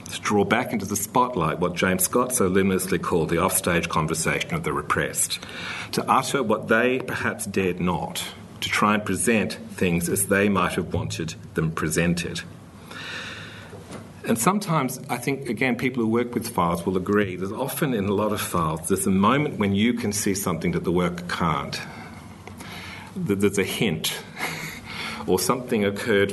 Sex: male